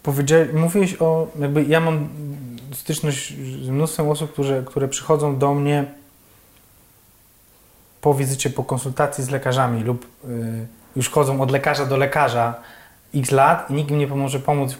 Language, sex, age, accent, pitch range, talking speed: Polish, male, 20-39, native, 125-150 Hz, 150 wpm